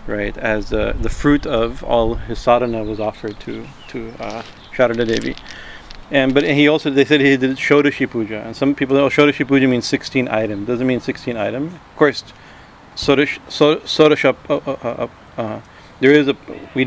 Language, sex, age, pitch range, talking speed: English, male, 40-59, 110-130 Hz, 175 wpm